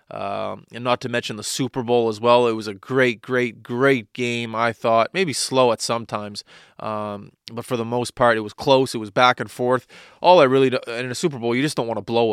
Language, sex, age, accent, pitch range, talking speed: English, male, 20-39, American, 110-125 Hz, 250 wpm